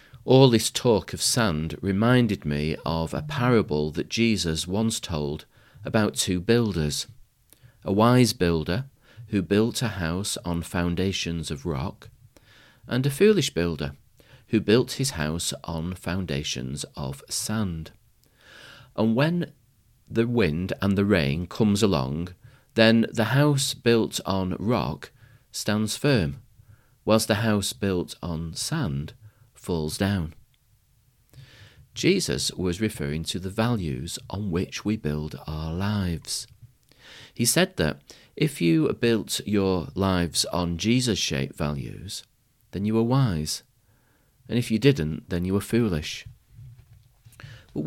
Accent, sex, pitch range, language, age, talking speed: British, male, 85-120 Hz, English, 40-59, 125 wpm